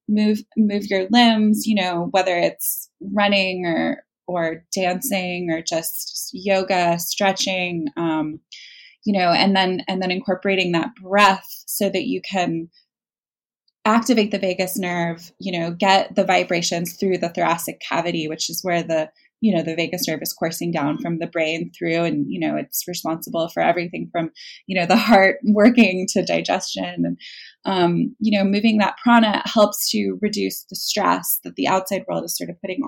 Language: English